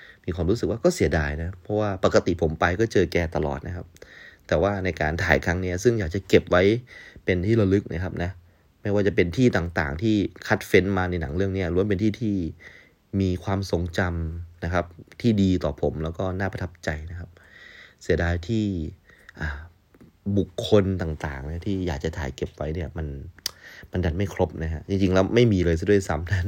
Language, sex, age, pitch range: Thai, male, 20-39, 80-100 Hz